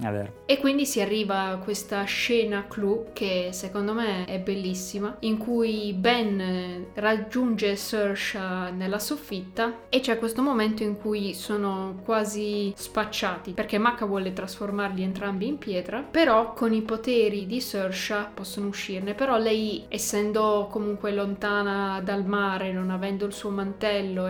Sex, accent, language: female, native, Italian